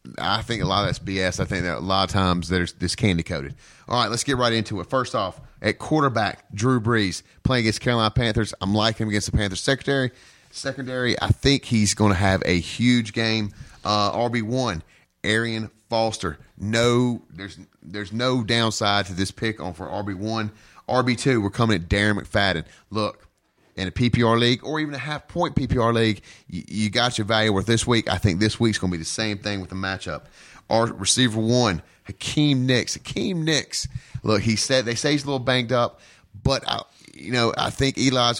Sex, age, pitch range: male, 30-49, 100-125 Hz